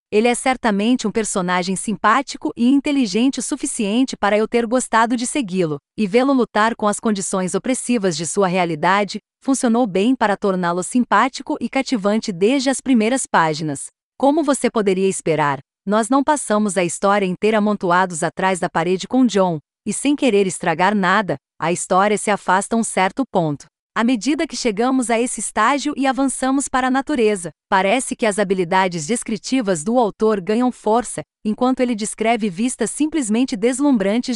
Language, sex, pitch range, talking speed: Portuguese, female, 195-250 Hz, 160 wpm